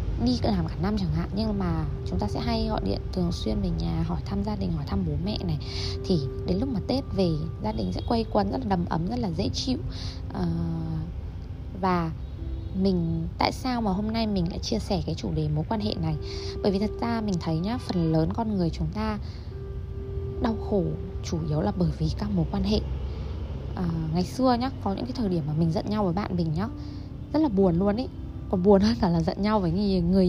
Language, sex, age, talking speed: Vietnamese, female, 20-39, 235 wpm